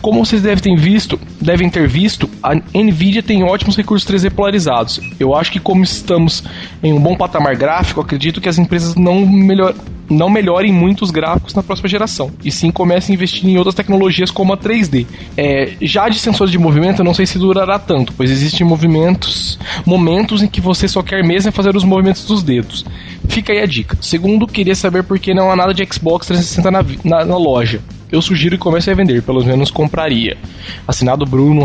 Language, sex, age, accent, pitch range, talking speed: Portuguese, male, 20-39, Brazilian, 145-195 Hz, 205 wpm